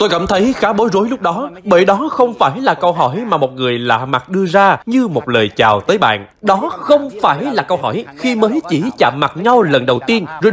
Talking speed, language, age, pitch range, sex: 250 wpm, Vietnamese, 20-39, 155-230 Hz, male